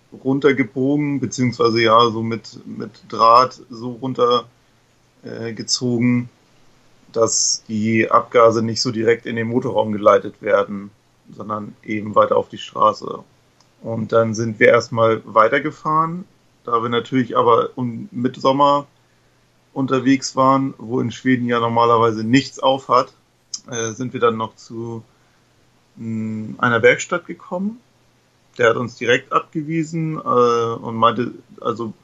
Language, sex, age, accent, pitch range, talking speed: German, male, 40-59, German, 115-135 Hz, 130 wpm